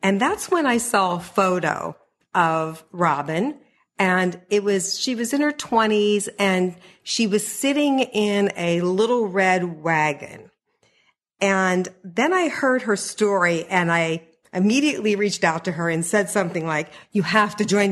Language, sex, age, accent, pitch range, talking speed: English, female, 50-69, American, 170-215 Hz, 155 wpm